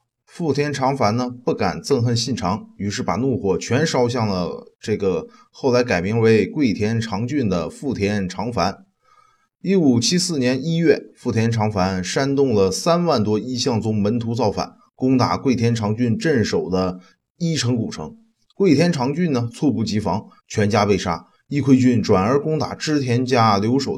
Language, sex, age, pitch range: Chinese, male, 20-39, 110-150 Hz